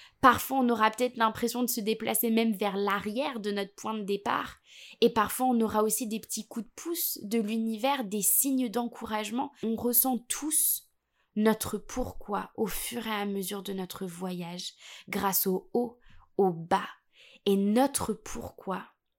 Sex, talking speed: female, 165 wpm